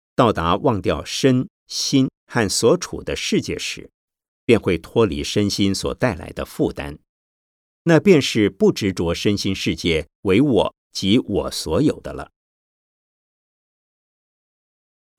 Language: Chinese